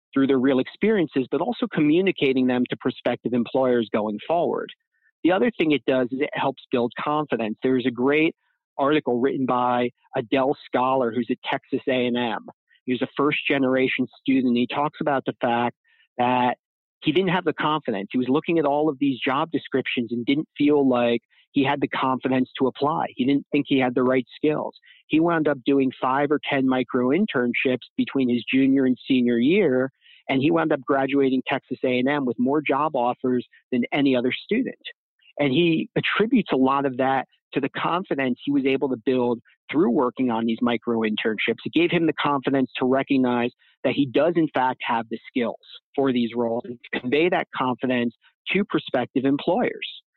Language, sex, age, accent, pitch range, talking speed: English, male, 40-59, American, 125-150 Hz, 185 wpm